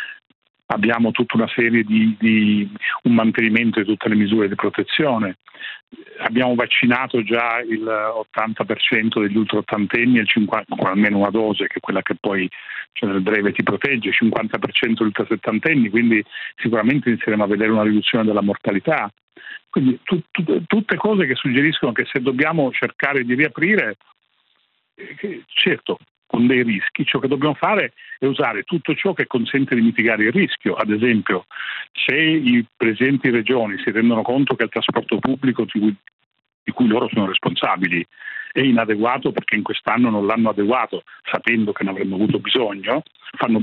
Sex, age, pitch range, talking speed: male, 40-59, 110-130 Hz, 160 wpm